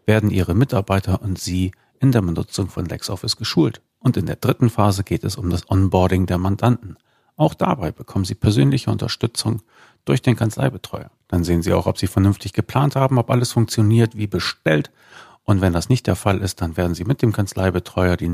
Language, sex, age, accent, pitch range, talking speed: German, male, 40-59, German, 90-115 Hz, 195 wpm